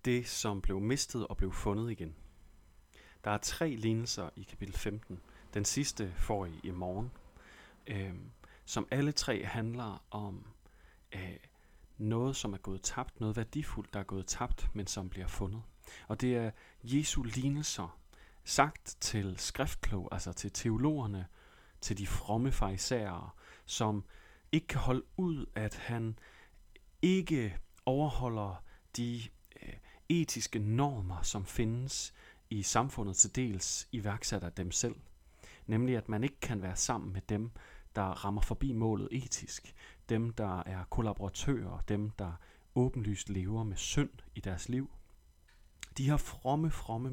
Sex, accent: male, native